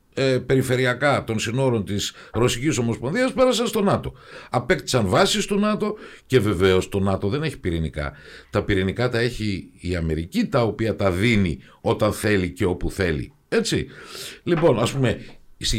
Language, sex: Greek, male